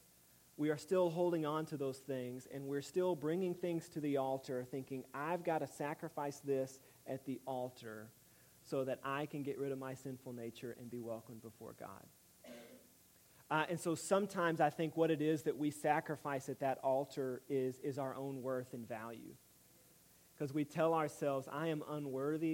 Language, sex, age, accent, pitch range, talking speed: English, male, 40-59, American, 130-150 Hz, 185 wpm